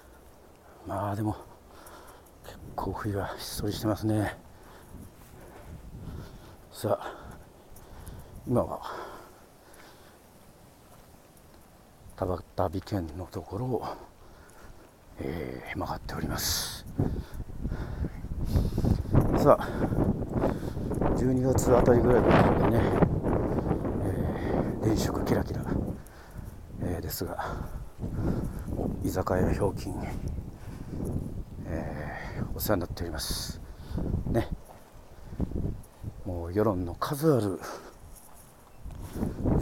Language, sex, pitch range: Japanese, male, 85-105 Hz